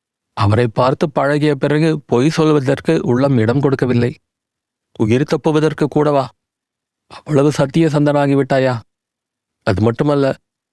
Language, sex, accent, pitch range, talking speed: Tamil, male, native, 120-150 Hz, 85 wpm